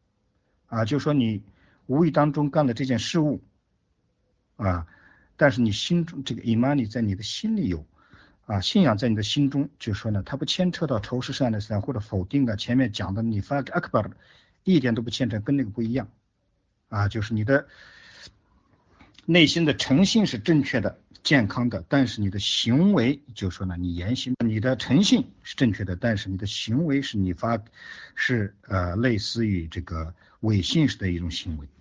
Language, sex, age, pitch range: Chinese, male, 50-69, 100-135 Hz